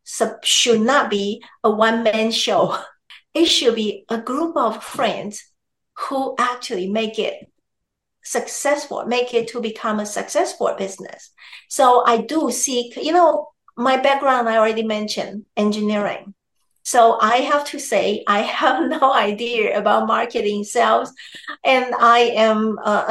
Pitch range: 215-295 Hz